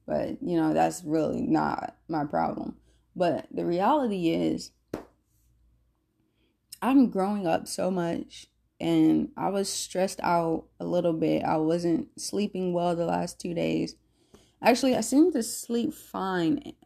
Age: 20-39